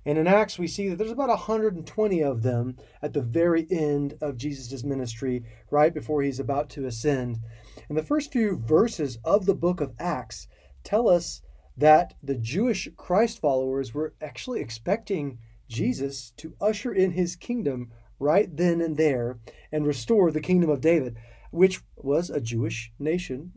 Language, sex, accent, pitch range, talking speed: English, male, American, 130-175 Hz, 165 wpm